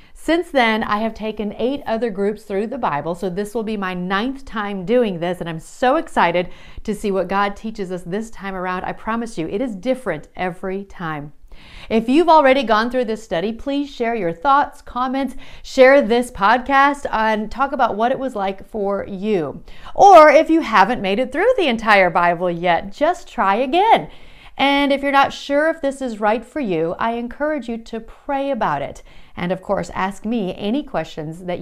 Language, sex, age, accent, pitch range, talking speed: English, female, 40-59, American, 180-250 Hz, 200 wpm